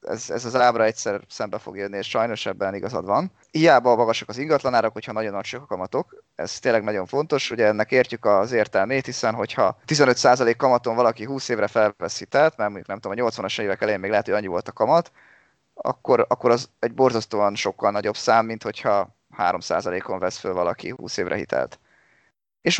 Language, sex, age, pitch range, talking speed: Hungarian, male, 20-39, 105-130 Hz, 190 wpm